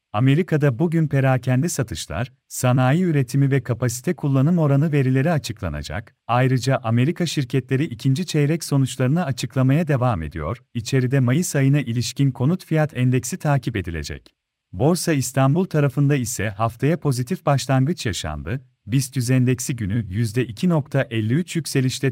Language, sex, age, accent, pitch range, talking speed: Turkish, male, 40-59, native, 125-155 Hz, 115 wpm